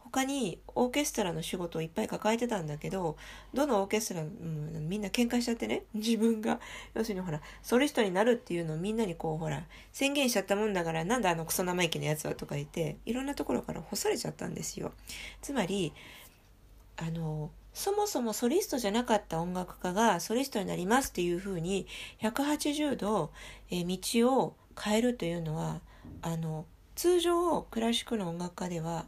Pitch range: 165-235 Hz